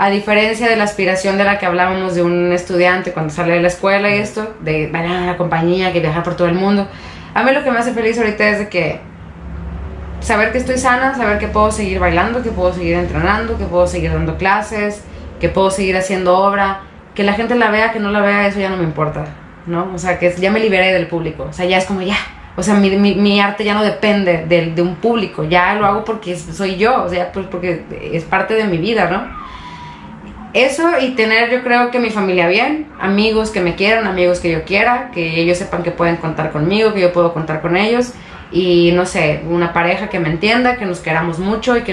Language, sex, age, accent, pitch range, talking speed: Spanish, female, 20-39, Mexican, 170-205 Hz, 240 wpm